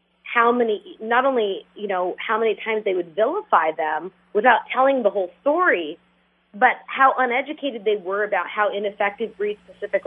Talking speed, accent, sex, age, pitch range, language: 160 wpm, American, female, 30-49, 205-270 Hz, English